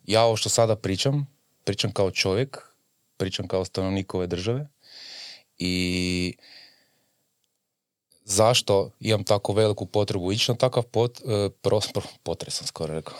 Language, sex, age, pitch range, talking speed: Croatian, male, 20-39, 90-120 Hz, 125 wpm